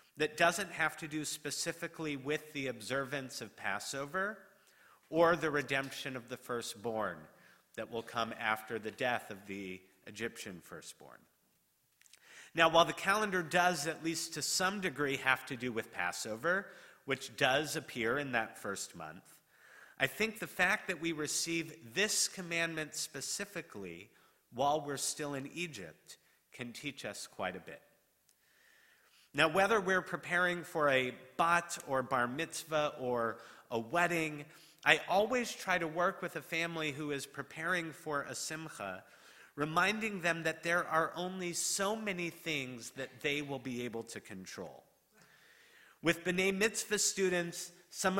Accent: American